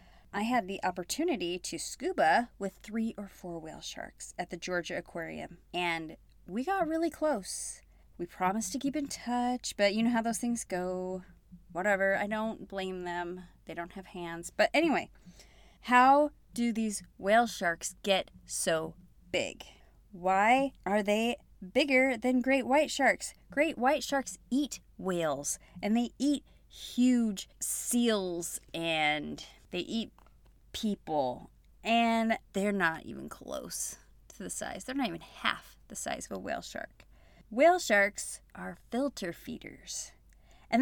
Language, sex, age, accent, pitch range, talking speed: English, female, 30-49, American, 185-265 Hz, 145 wpm